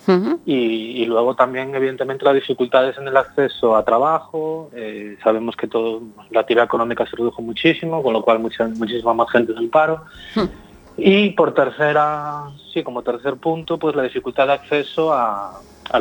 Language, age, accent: Spanish, 30-49, Spanish